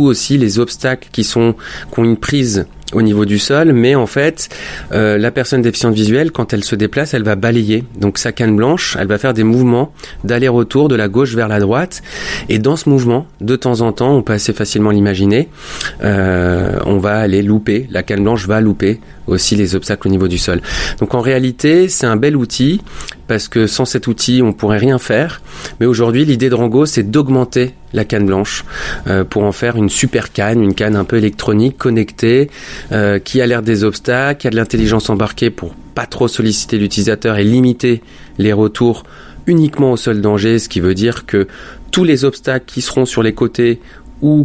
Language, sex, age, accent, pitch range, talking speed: French, male, 30-49, French, 105-130 Hz, 205 wpm